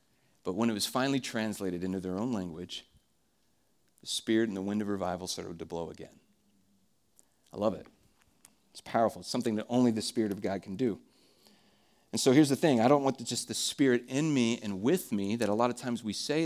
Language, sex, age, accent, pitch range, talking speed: English, male, 40-59, American, 105-125 Hz, 215 wpm